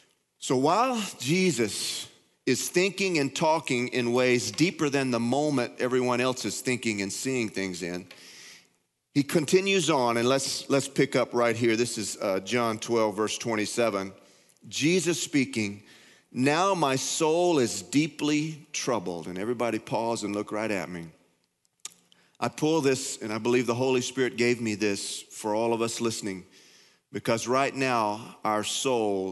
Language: English